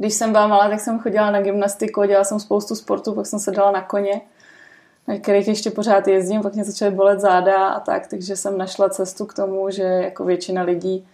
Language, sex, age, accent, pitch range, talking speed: Czech, female, 20-39, native, 185-210 Hz, 220 wpm